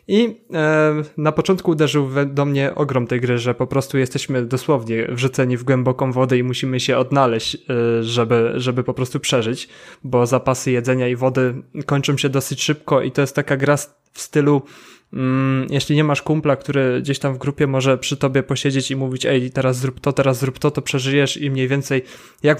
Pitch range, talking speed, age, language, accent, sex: 130-145 Hz, 190 wpm, 20-39, Polish, native, male